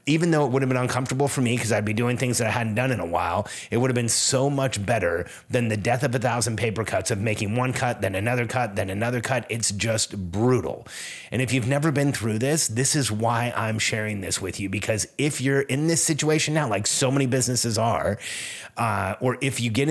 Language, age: English, 30-49